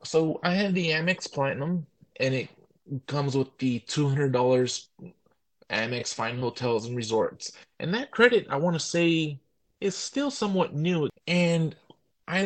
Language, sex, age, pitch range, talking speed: English, male, 20-39, 115-145 Hz, 145 wpm